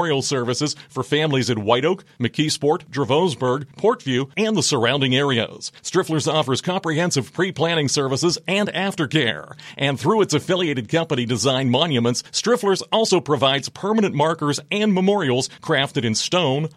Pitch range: 120-160 Hz